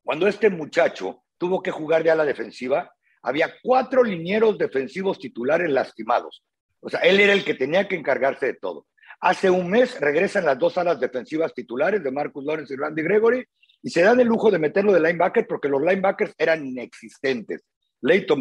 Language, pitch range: English, 160-225 Hz